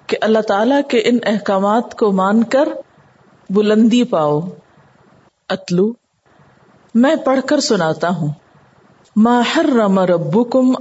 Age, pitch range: 50-69, 185-235 Hz